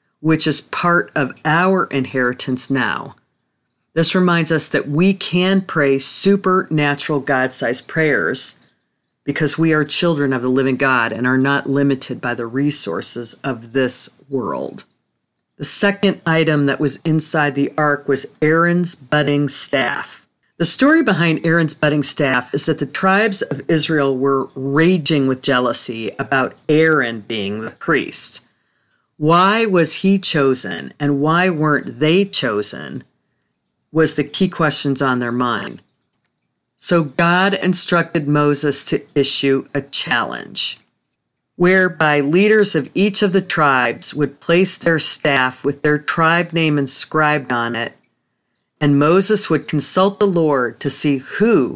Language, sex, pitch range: English, female, 135-170 Hz